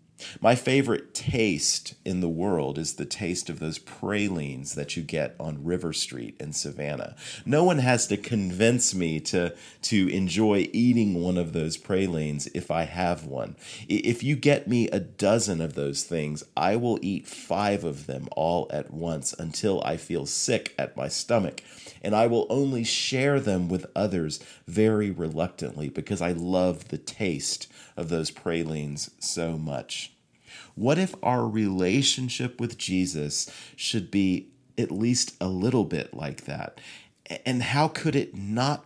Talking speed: 160 wpm